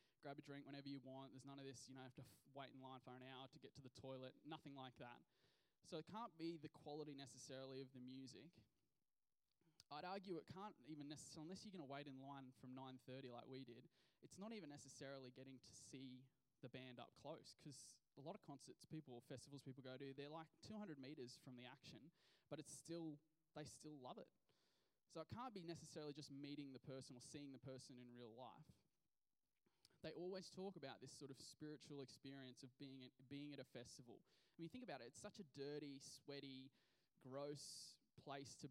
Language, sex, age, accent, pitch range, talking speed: English, male, 20-39, Australian, 130-155 Hz, 210 wpm